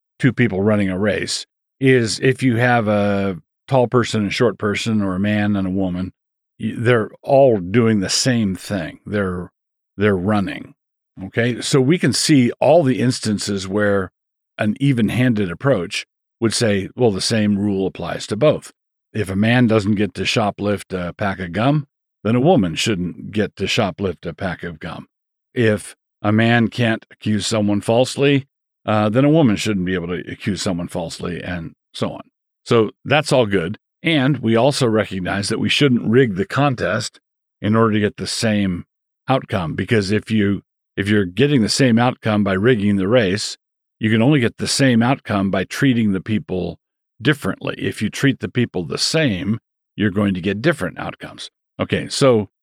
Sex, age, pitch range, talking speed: male, 50-69, 100-125 Hz, 175 wpm